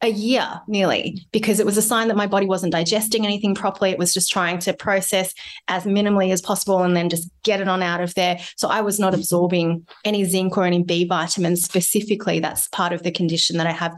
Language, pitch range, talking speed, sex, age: English, 175-210 Hz, 230 wpm, female, 20-39